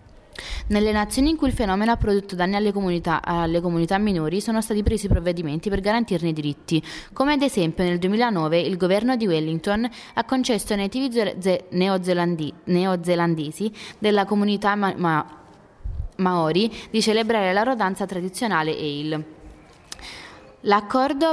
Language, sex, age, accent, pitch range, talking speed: Italian, female, 20-39, native, 170-220 Hz, 140 wpm